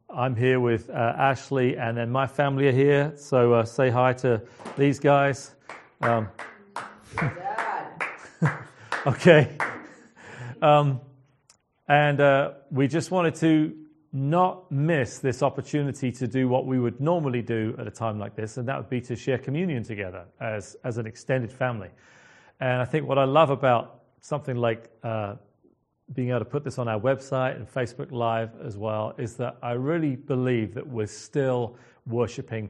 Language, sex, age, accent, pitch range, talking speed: English, male, 40-59, British, 120-145 Hz, 160 wpm